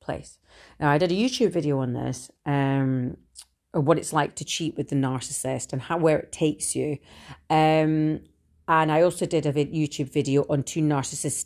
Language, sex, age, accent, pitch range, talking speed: English, female, 40-59, British, 135-175 Hz, 180 wpm